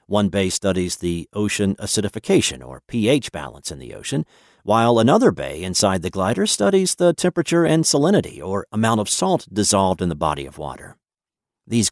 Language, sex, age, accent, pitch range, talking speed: English, male, 50-69, American, 90-120 Hz, 170 wpm